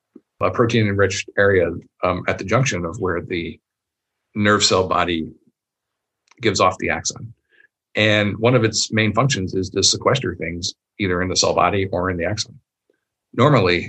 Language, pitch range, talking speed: English, 90-110 Hz, 160 wpm